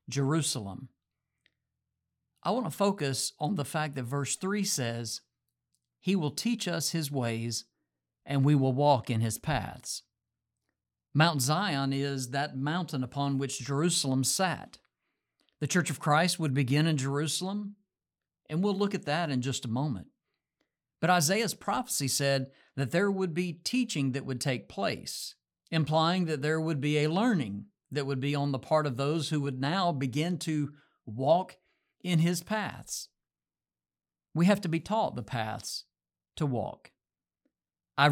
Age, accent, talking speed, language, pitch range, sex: 50-69, American, 155 wpm, English, 135-165 Hz, male